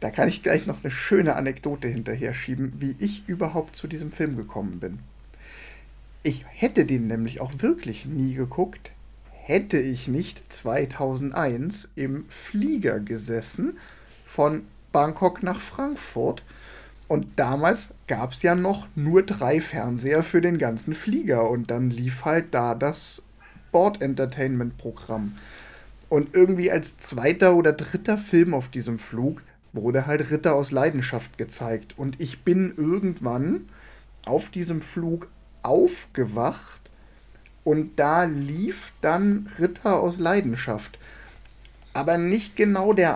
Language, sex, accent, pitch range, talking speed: German, male, German, 130-185 Hz, 130 wpm